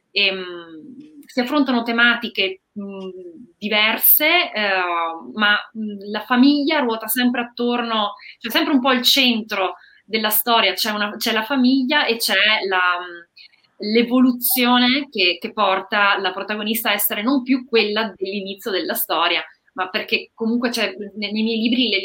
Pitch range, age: 195-235 Hz, 20-39